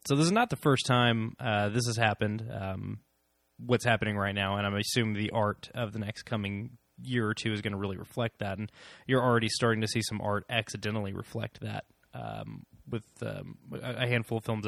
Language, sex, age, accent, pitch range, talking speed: English, male, 20-39, American, 100-120 Hz, 215 wpm